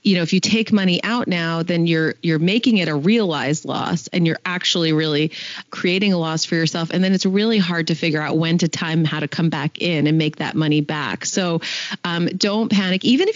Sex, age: female, 30-49